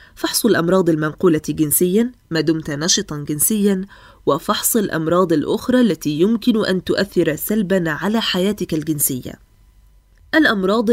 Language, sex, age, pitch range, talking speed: Arabic, female, 20-39, 165-225 Hz, 110 wpm